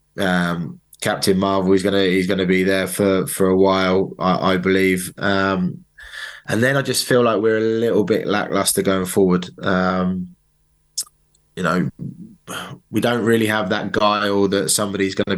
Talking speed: 170 wpm